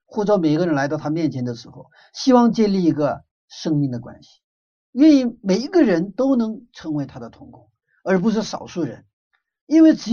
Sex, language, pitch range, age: male, Chinese, 145-230 Hz, 50-69